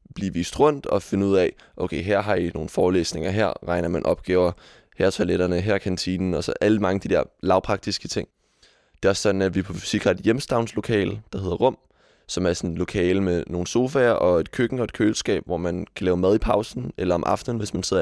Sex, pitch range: male, 90-105 Hz